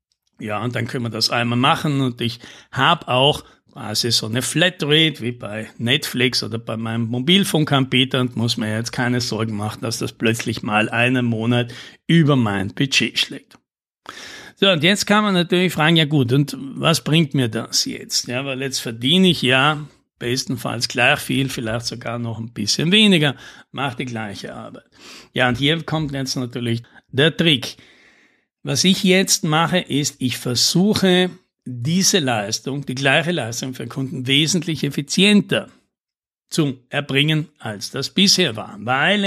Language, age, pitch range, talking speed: German, 60-79, 120-160 Hz, 160 wpm